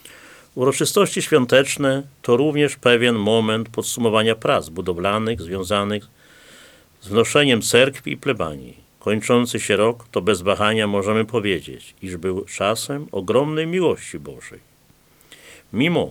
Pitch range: 100-120 Hz